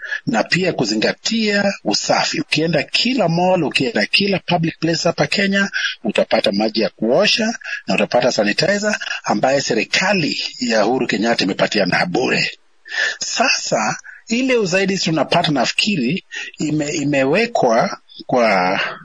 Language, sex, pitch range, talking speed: Swahili, male, 145-210 Hz, 115 wpm